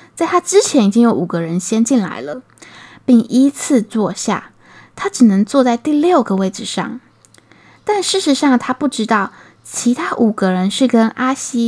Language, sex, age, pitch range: Chinese, female, 20-39, 220-290 Hz